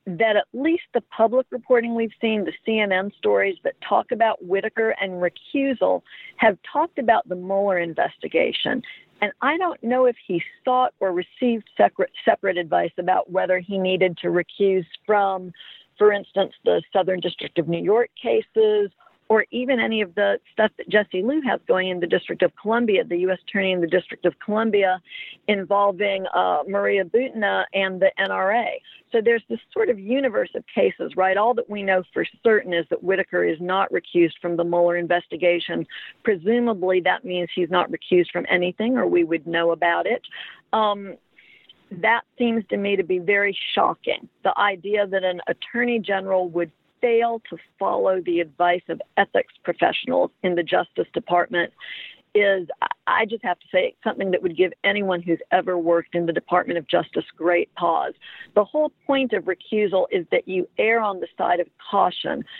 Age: 50-69